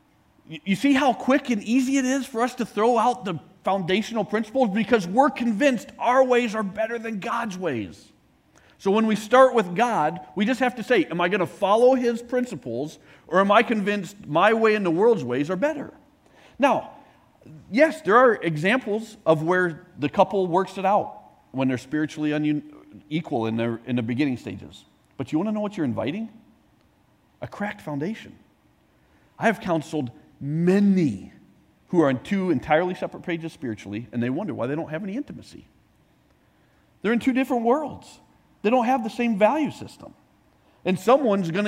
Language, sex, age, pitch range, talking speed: English, male, 40-59, 155-235 Hz, 175 wpm